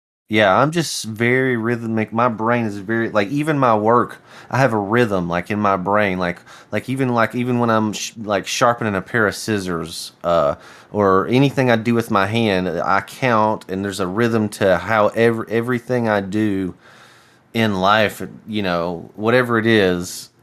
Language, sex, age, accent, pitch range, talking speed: English, male, 30-49, American, 95-115 Hz, 180 wpm